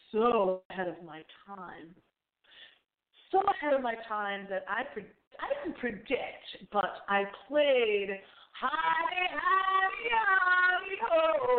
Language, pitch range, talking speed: English, 195-290 Hz, 105 wpm